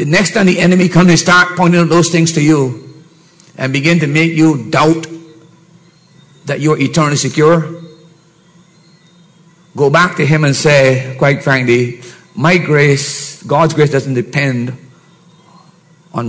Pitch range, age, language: 135-170 Hz, 50-69, English